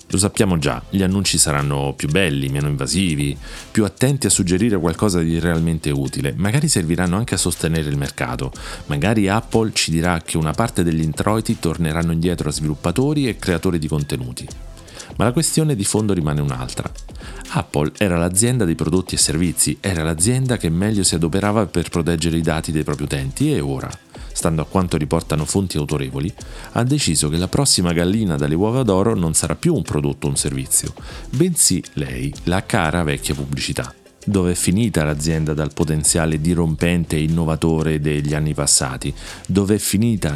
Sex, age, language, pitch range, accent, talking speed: male, 40-59, Italian, 75-95 Hz, native, 170 wpm